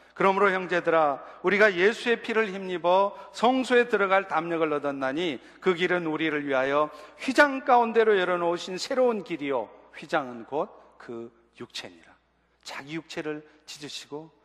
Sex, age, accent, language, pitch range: male, 40-59, native, Korean, 150-225 Hz